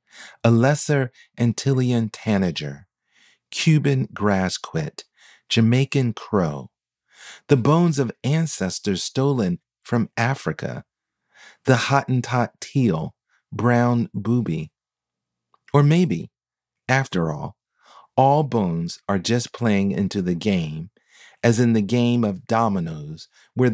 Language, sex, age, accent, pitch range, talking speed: English, male, 40-59, American, 90-125 Hz, 100 wpm